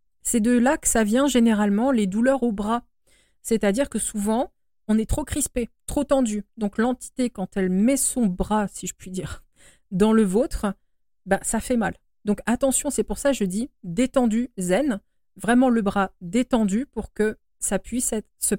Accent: French